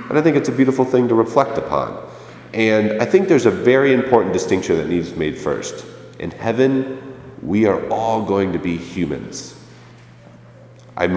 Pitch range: 80-110 Hz